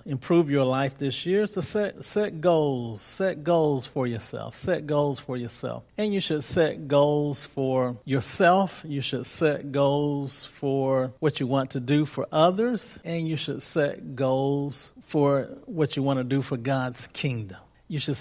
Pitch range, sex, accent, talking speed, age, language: 135-165 Hz, male, American, 170 wpm, 50-69, English